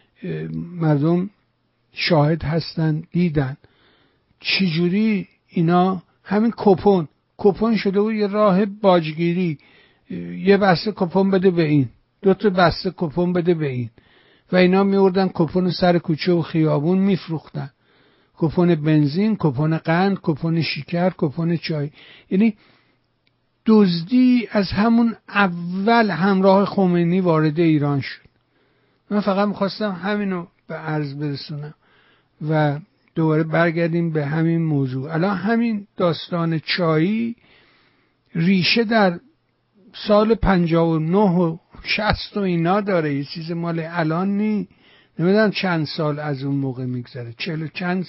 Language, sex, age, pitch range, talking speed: Persian, male, 60-79, 155-195 Hz, 110 wpm